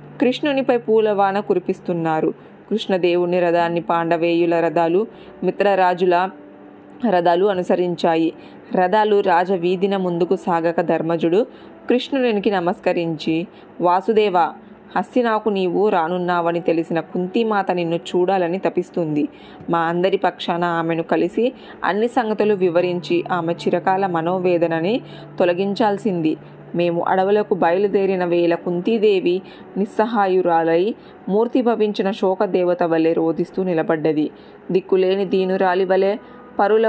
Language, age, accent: Telugu, 20-39, native